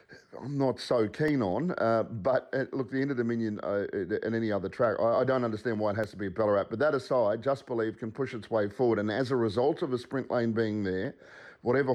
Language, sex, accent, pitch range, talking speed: English, male, Australian, 110-145 Hz, 250 wpm